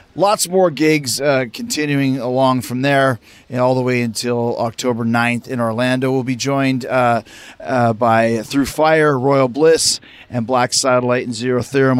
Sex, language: male, English